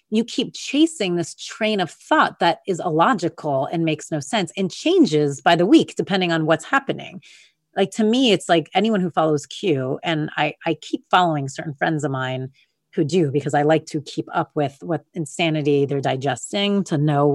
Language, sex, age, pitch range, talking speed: English, female, 30-49, 150-205 Hz, 195 wpm